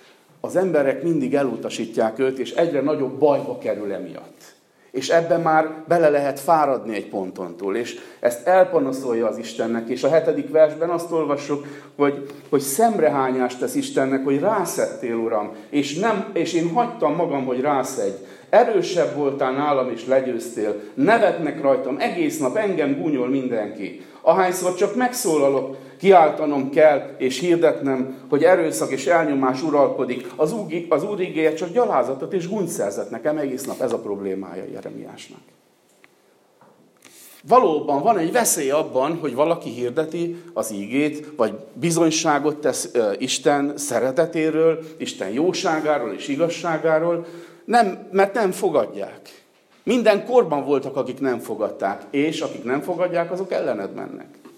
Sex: male